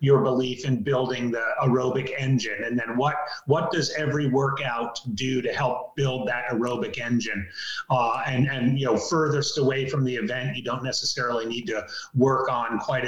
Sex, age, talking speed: male, 30-49, 180 wpm